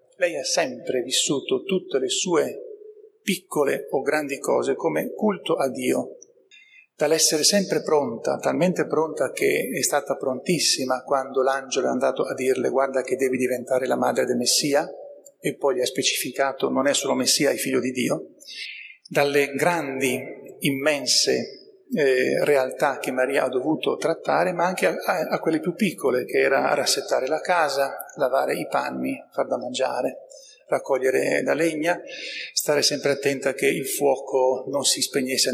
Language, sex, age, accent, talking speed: Italian, male, 40-59, native, 155 wpm